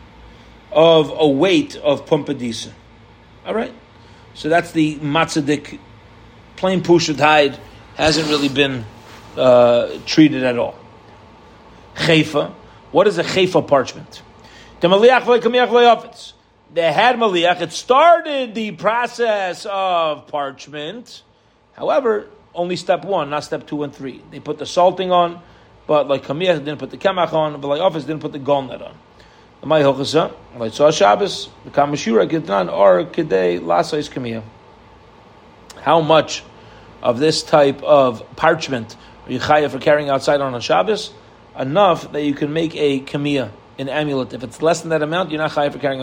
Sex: male